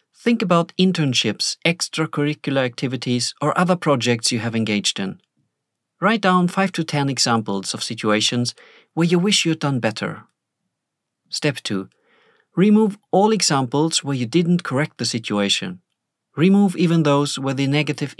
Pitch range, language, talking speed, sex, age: 120-170 Hz, English, 145 wpm, male, 40-59